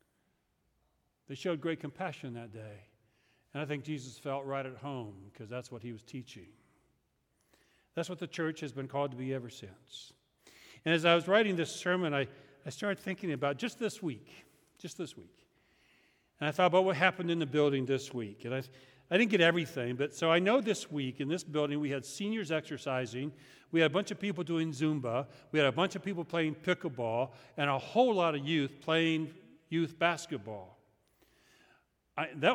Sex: male